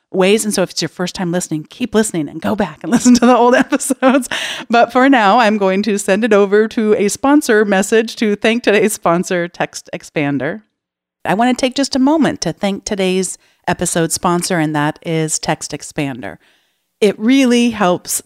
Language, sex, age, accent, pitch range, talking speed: English, female, 40-59, American, 155-215 Hz, 195 wpm